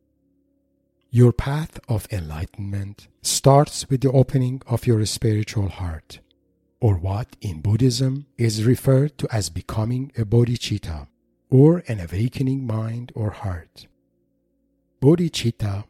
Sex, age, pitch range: male, 50-69, 95-125 Hz